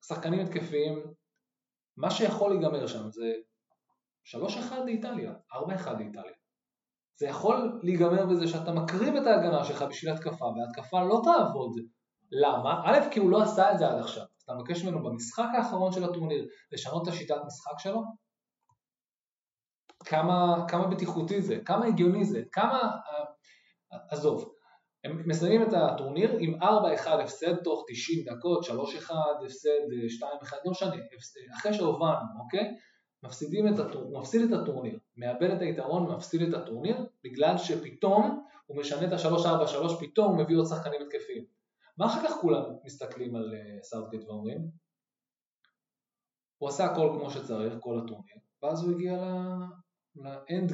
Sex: male